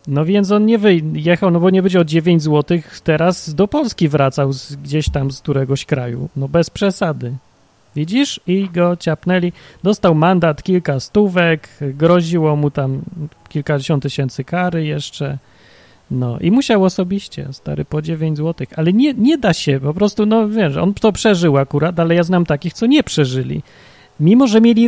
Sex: male